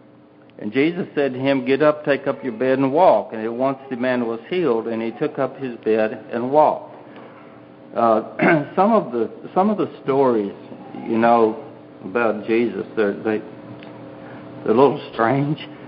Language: English